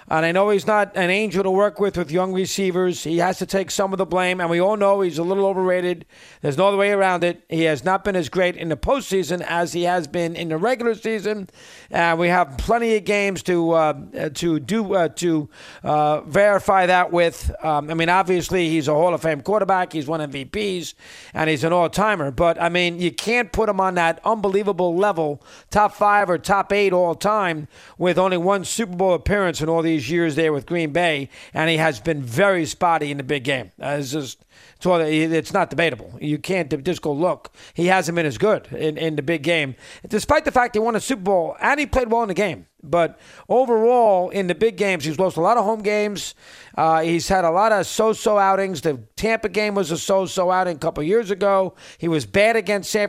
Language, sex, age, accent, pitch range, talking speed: English, male, 50-69, American, 165-200 Hz, 225 wpm